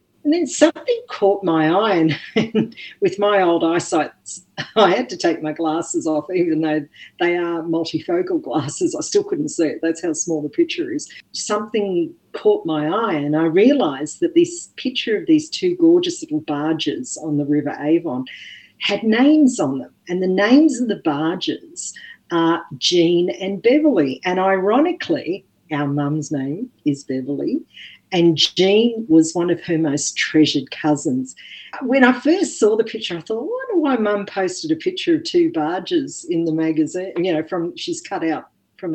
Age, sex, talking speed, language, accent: 50-69, female, 175 wpm, English, Australian